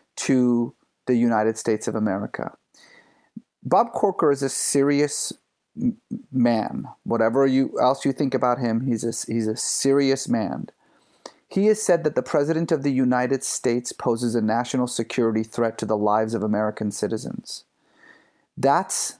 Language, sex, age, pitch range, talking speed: English, male, 40-59, 120-155 Hz, 145 wpm